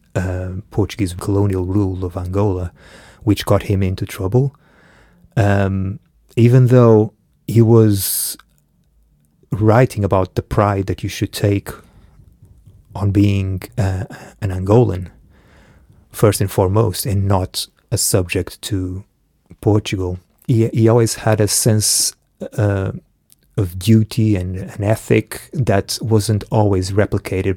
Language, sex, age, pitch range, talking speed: English, male, 30-49, 95-110 Hz, 120 wpm